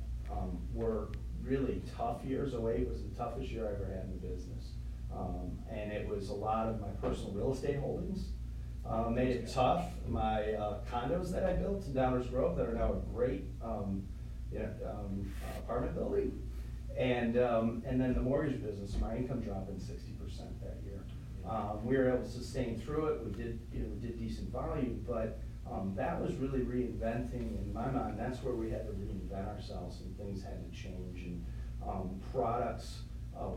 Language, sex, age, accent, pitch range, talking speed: English, male, 40-59, American, 95-125 Hz, 190 wpm